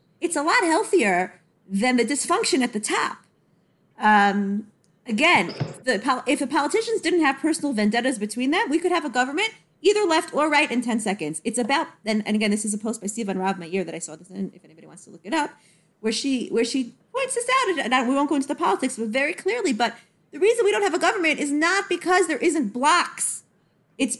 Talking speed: 235 wpm